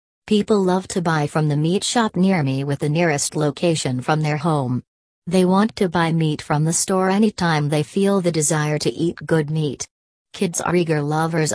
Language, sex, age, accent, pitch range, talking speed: English, female, 40-59, American, 150-180 Hz, 195 wpm